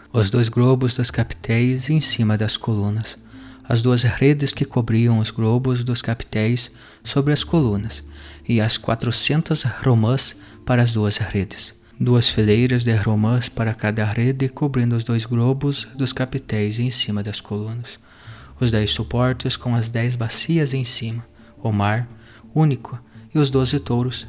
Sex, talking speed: male, 155 wpm